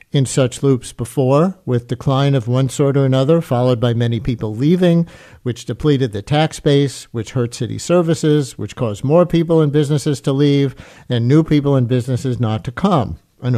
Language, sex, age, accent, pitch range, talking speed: English, male, 50-69, American, 120-145 Hz, 185 wpm